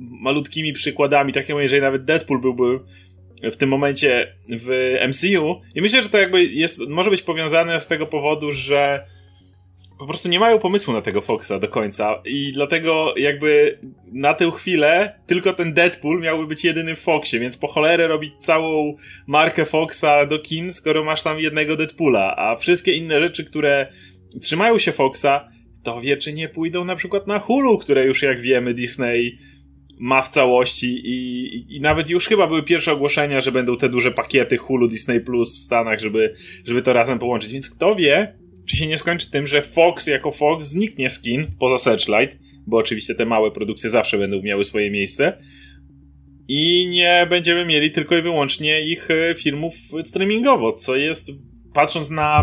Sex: male